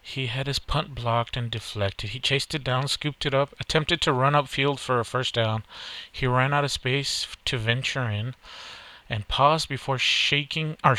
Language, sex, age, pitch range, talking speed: English, male, 30-49, 115-135 Hz, 190 wpm